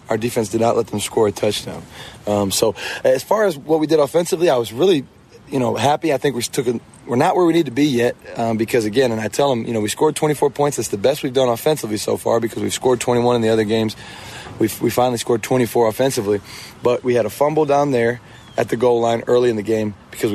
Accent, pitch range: American, 115-140 Hz